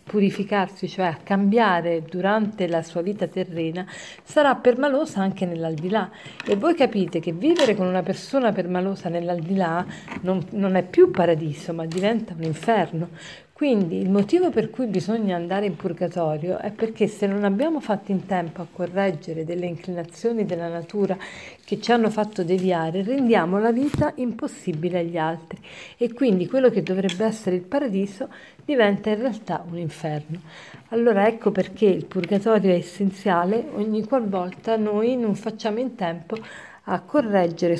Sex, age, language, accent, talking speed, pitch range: female, 50-69, Italian, native, 150 wpm, 180-220 Hz